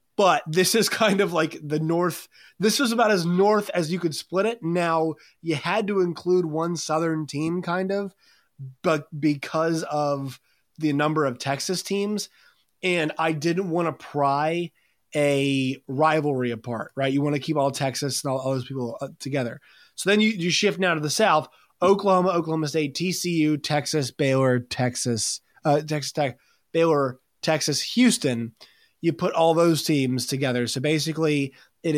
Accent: American